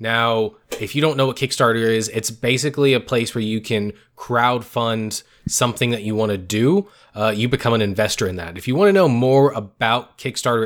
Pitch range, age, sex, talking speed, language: 115-145 Hz, 20-39, male, 205 wpm, English